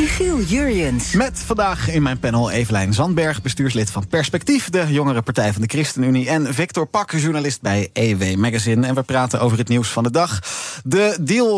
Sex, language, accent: male, Dutch, Dutch